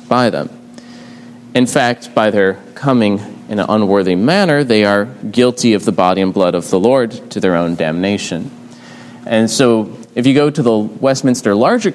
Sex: male